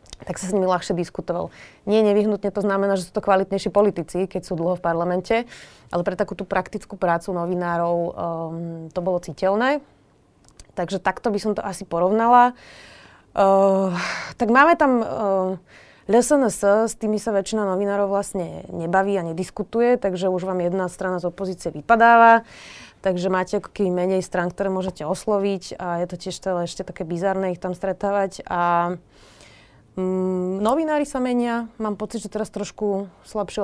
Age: 20-39